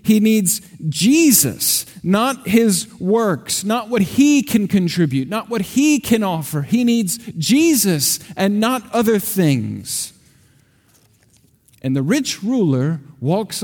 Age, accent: 50-69, American